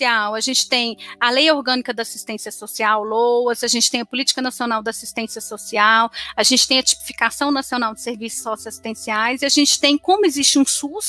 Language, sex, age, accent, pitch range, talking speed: Portuguese, female, 30-49, Brazilian, 225-275 Hz, 195 wpm